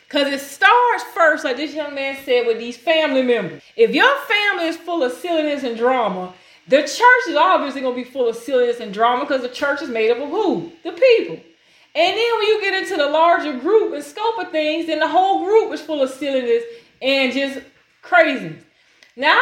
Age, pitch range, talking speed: 30-49, 255-345 Hz, 215 wpm